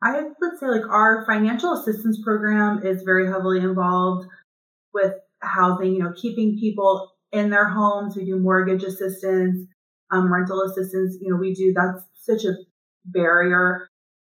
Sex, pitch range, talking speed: female, 180-200 Hz, 150 wpm